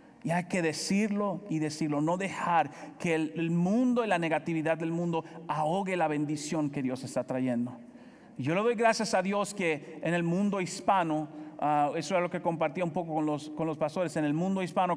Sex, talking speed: male, 210 wpm